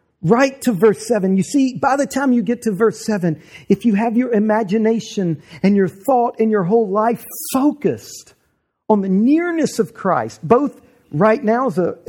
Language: English